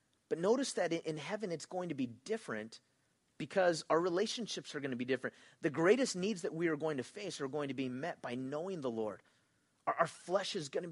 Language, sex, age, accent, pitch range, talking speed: English, male, 30-49, American, 140-190 Hz, 215 wpm